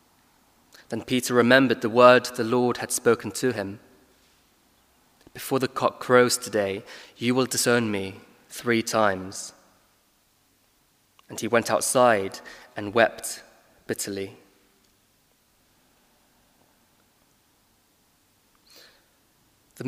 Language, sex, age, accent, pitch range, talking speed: English, male, 20-39, British, 105-135 Hz, 90 wpm